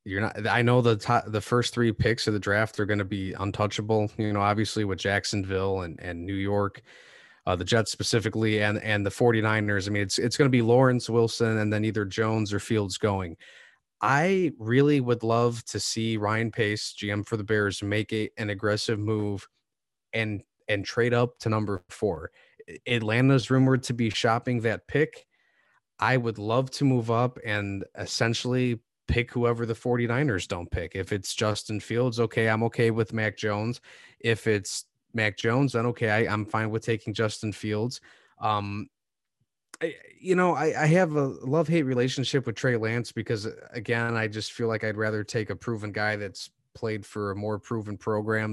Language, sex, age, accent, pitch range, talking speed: English, male, 20-39, American, 105-120 Hz, 190 wpm